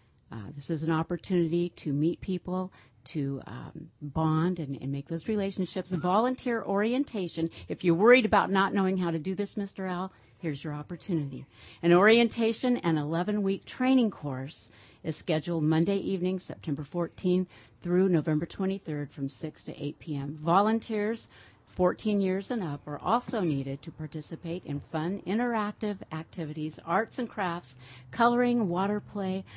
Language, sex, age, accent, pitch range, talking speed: English, female, 50-69, American, 150-190 Hz, 150 wpm